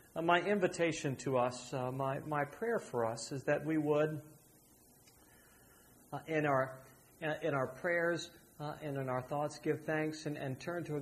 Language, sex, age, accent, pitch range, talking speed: English, male, 40-59, American, 130-155 Hz, 180 wpm